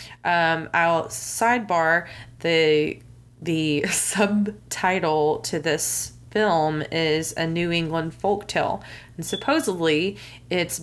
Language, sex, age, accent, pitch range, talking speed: English, female, 20-39, American, 155-210 Hz, 95 wpm